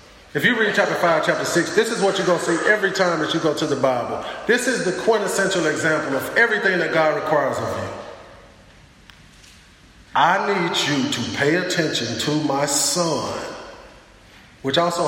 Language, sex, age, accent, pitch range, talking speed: English, male, 40-59, American, 125-190 Hz, 180 wpm